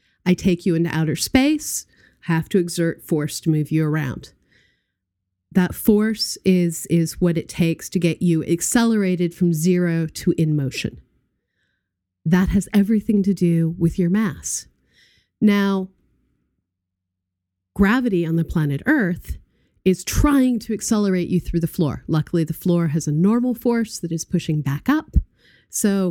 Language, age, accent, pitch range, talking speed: English, 30-49, American, 150-195 Hz, 150 wpm